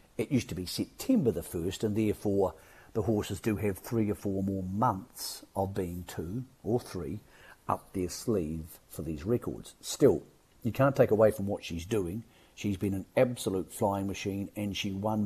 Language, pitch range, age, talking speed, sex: English, 95-120 Hz, 50-69, 185 wpm, male